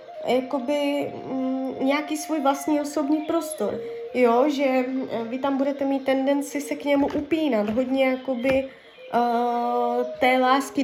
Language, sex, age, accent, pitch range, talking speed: Czech, female, 20-39, native, 235-285 Hz, 100 wpm